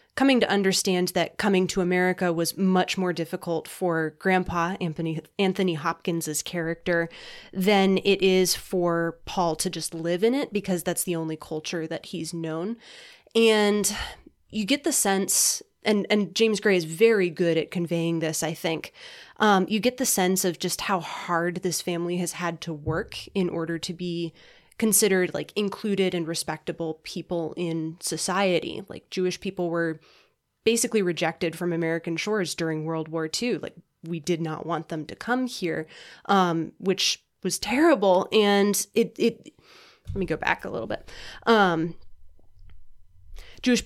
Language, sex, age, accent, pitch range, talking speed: English, female, 20-39, American, 165-200 Hz, 160 wpm